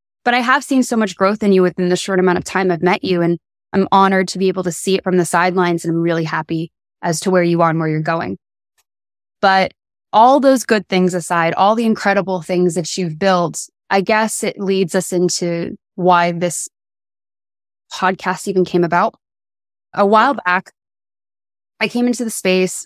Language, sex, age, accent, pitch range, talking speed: English, female, 20-39, American, 175-205 Hz, 200 wpm